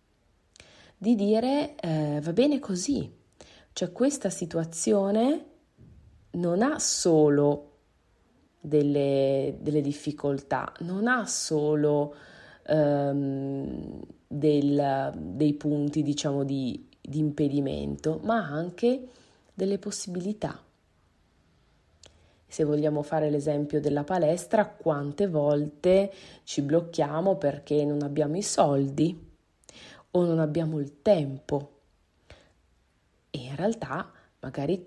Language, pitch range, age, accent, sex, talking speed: Italian, 145-180 Hz, 30-49, native, female, 90 wpm